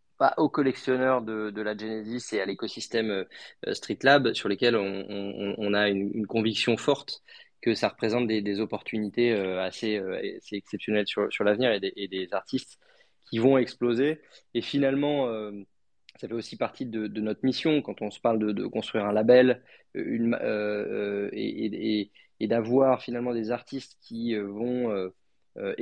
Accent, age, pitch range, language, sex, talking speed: French, 20-39, 100-125 Hz, French, male, 180 wpm